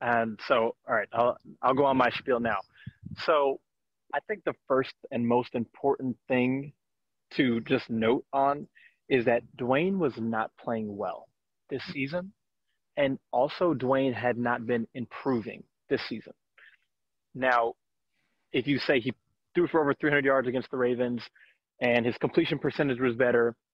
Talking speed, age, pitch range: 155 wpm, 30-49, 120-145 Hz